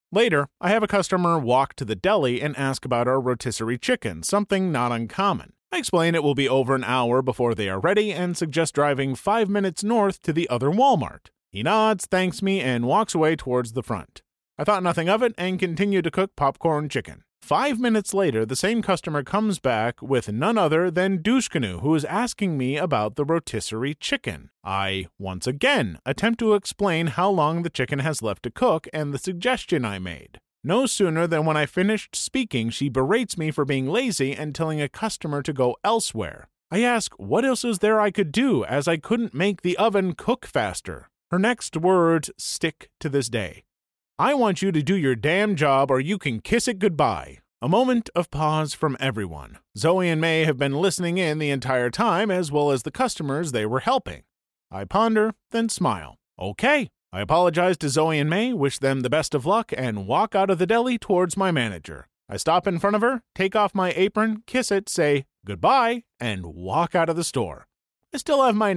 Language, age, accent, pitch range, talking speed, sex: English, 30-49, American, 135-205 Hz, 205 wpm, male